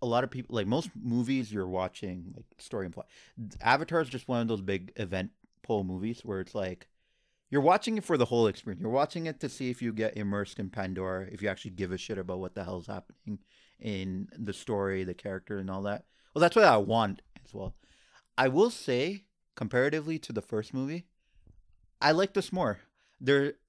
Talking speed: 210 wpm